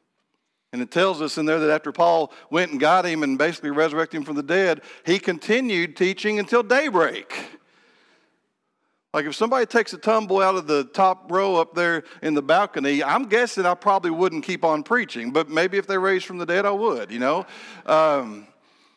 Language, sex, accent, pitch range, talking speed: English, male, American, 145-195 Hz, 195 wpm